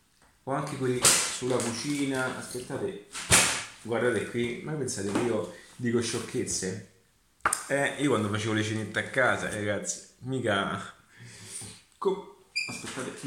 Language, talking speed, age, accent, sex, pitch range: Italian, 120 wpm, 30-49, native, male, 105-135 Hz